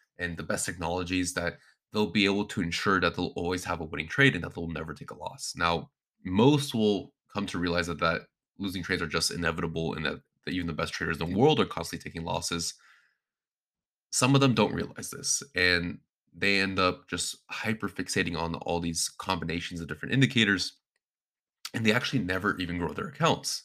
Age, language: 20-39, English